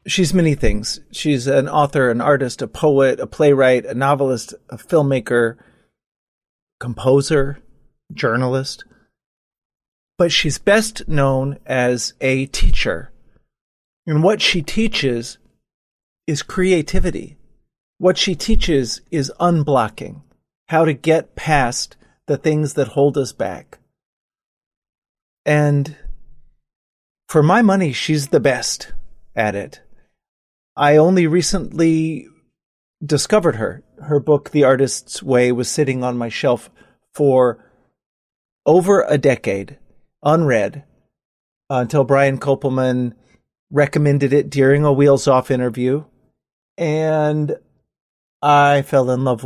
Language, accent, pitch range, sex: English, American, 125-150 Hz, male